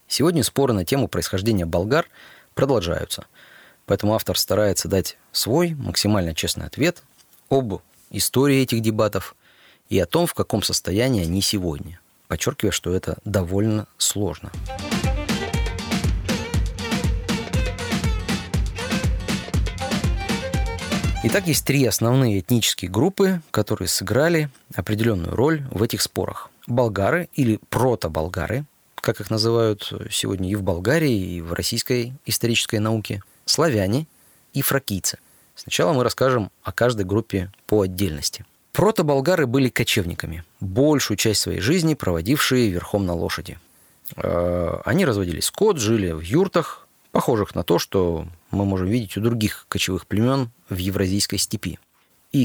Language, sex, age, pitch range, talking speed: Russian, male, 30-49, 95-120 Hz, 120 wpm